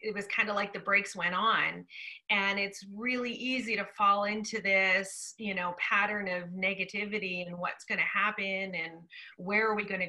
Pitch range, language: 195-230 Hz, English